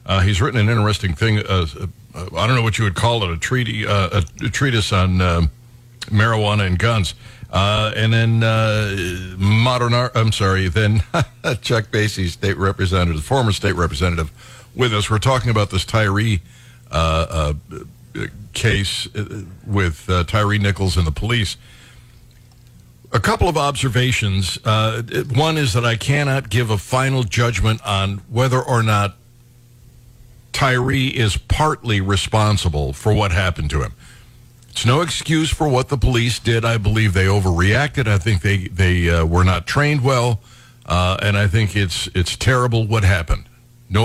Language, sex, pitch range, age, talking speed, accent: English, male, 95-120 Hz, 60-79, 160 wpm, American